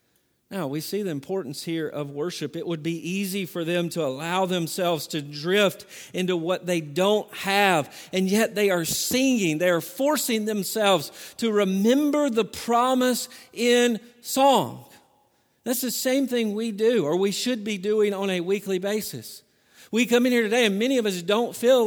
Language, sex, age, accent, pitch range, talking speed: English, male, 50-69, American, 195-240 Hz, 180 wpm